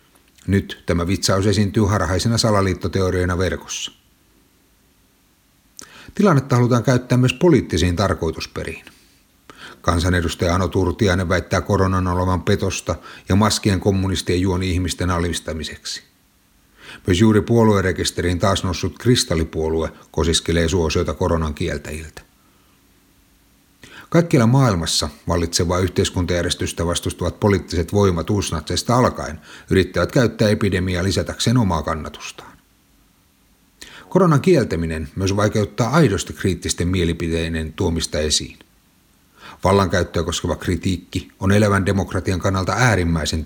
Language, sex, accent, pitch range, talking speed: Finnish, male, native, 85-100 Hz, 95 wpm